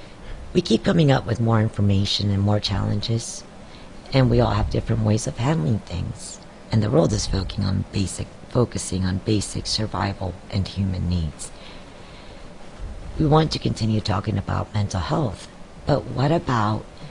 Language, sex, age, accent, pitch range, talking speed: English, female, 50-69, American, 90-125 Hz, 145 wpm